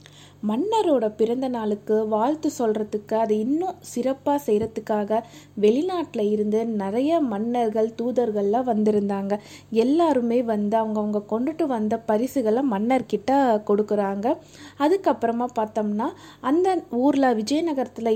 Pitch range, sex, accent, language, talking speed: 215-275 Hz, female, native, Tamil, 95 wpm